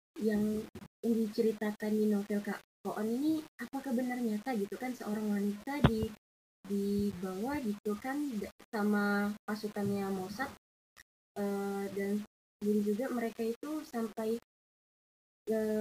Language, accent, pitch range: Indonesian, native, 200-230 Hz